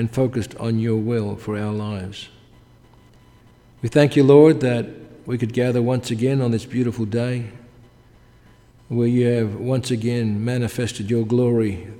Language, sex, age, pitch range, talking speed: English, male, 50-69, 115-125 Hz, 150 wpm